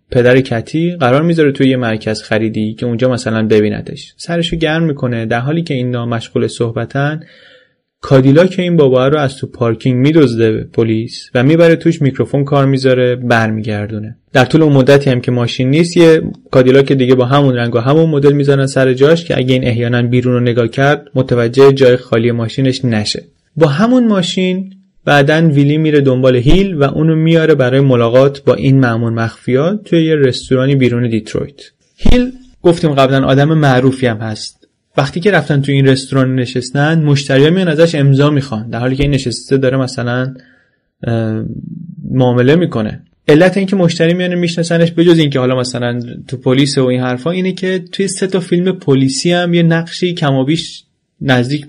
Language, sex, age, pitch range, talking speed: Persian, male, 20-39, 125-160 Hz, 170 wpm